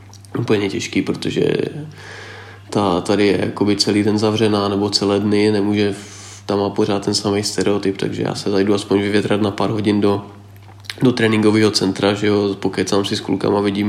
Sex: male